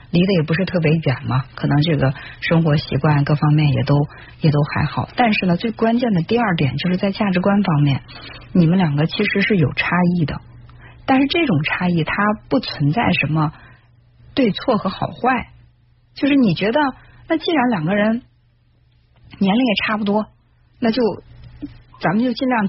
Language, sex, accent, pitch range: Chinese, female, native, 155-230 Hz